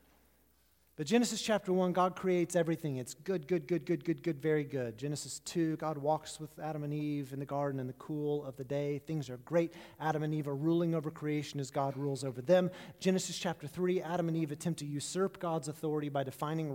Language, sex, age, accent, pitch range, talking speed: English, male, 30-49, American, 145-180 Hz, 220 wpm